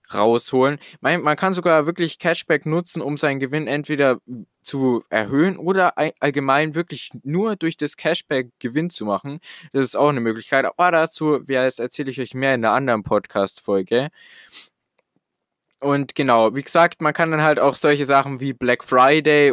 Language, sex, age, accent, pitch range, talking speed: German, male, 20-39, German, 125-150 Hz, 160 wpm